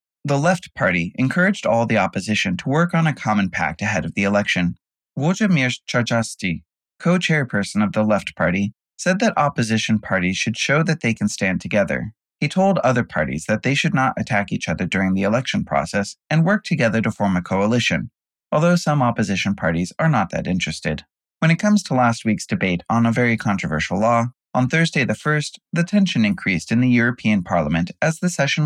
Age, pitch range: 20-39, 105-160 Hz